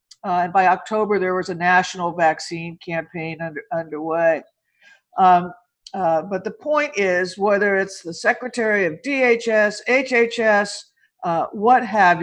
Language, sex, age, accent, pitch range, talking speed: English, female, 50-69, American, 175-235 Hz, 130 wpm